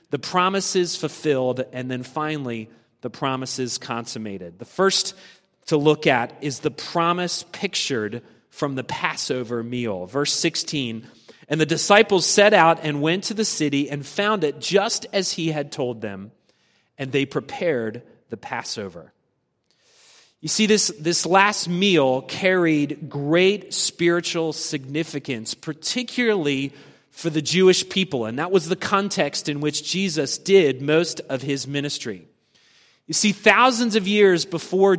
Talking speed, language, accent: 140 wpm, English, American